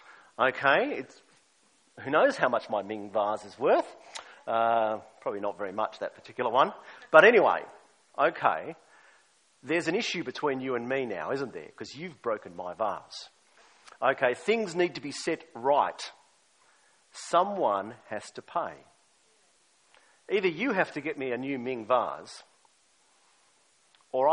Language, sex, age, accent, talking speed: English, male, 50-69, Australian, 145 wpm